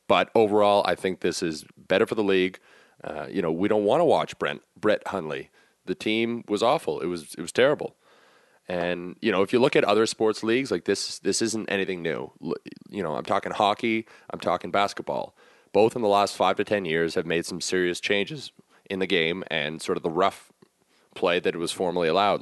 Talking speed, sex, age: 215 wpm, male, 30-49